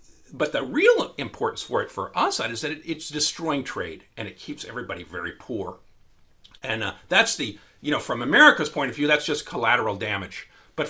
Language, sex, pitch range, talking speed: Arabic, male, 95-140 Hz, 200 wpm